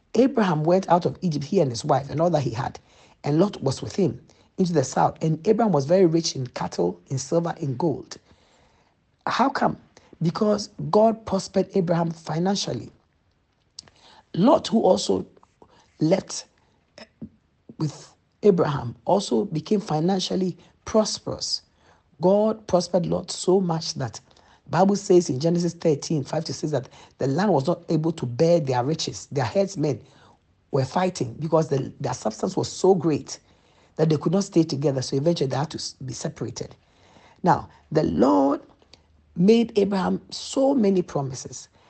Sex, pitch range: male, 140-185 Hz